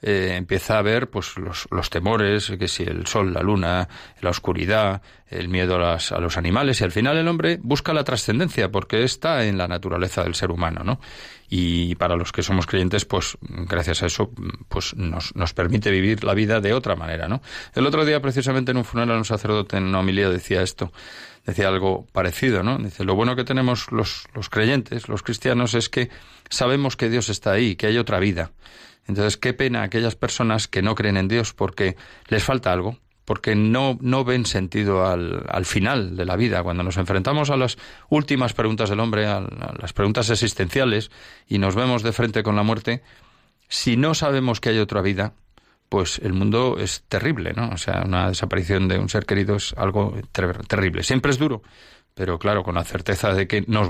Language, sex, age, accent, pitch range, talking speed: Spanish, male, 30-49, Spanish, 95-115 Hz, 205 wpm